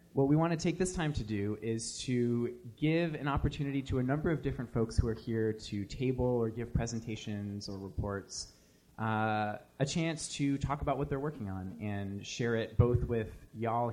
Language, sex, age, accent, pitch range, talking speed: English, male, 20-39, American, 100-125 Hz, 200 wpm